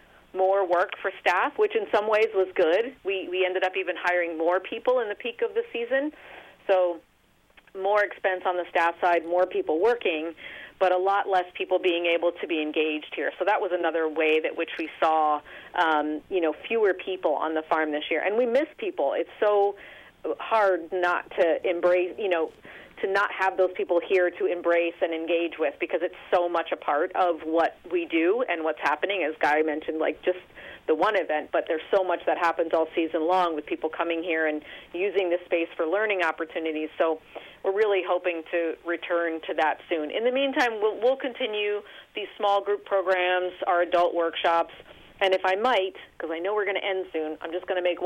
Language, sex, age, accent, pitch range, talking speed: English, female, 40-59, American, 165-195 Hz, 210 wpm